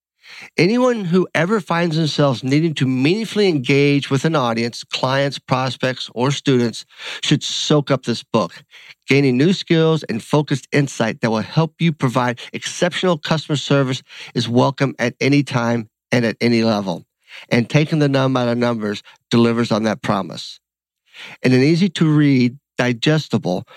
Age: 50-69